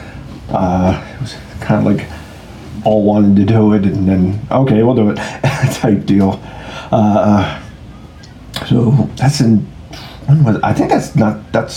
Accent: American